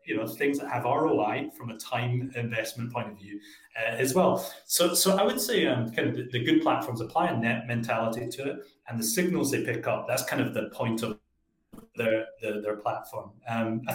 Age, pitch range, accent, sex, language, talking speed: 30-49, 110-145 Hz, British, male, English, 220 wpm